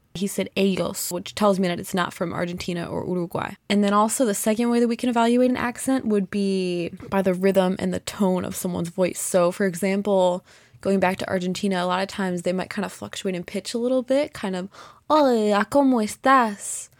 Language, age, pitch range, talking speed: English, 20-39, 185-215 Hz, 215 wpm